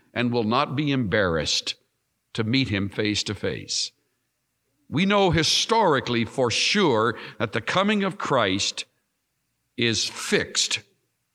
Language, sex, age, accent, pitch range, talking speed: English, male, 60-79, American, 125-180 Hz, 120 wpm